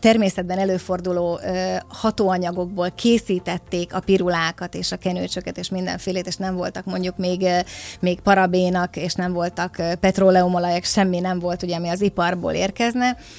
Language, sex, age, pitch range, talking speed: Hungarian, female, 30-49, 180-200 Hz, 135 wpm